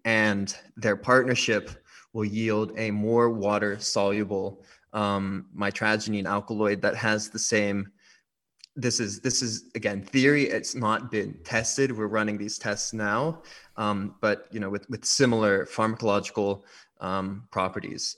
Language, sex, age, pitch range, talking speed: English, male, 20-39, 100-115 Hz, 130 wpm